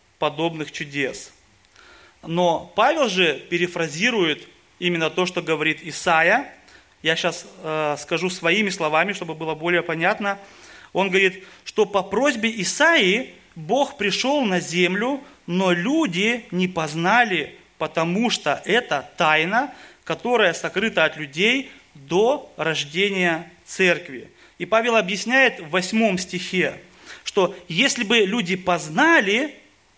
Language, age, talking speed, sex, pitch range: Russian, 30-49, 115 wpm, male, 170-225 Hz